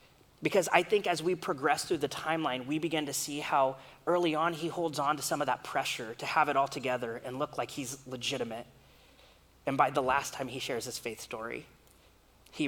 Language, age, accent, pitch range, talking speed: English, 30-49, American, 135-170 Hz, 215 wpm